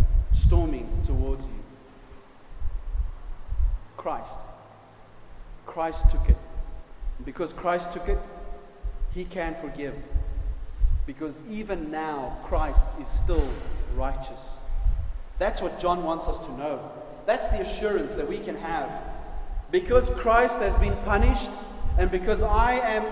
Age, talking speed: 30-49, 115 wpm